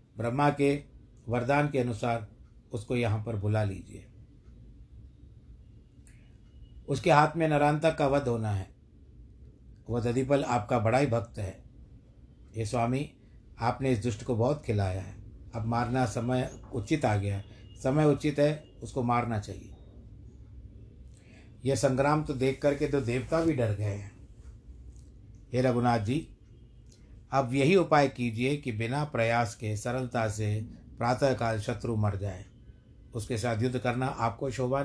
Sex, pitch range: male, 110-130 Hz